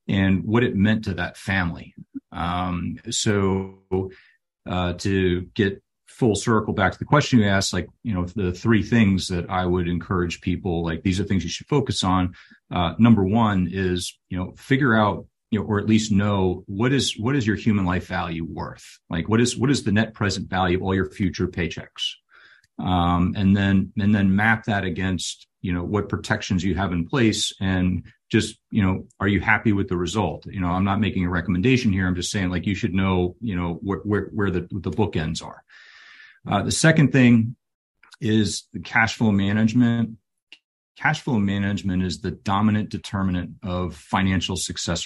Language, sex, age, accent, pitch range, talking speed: English, male, 40-59, American, 90-110 Hz, 195 wpm